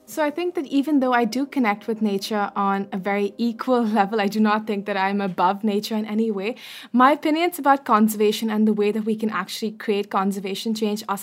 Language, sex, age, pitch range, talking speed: English, female, 20-39, 205-250 Hz, 225 wpm